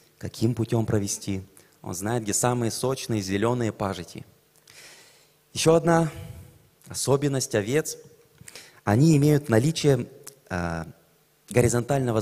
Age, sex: 30-49, male